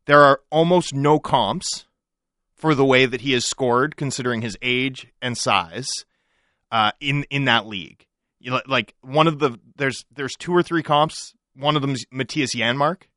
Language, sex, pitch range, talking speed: English, male, 125-165 Hz, 180 wpm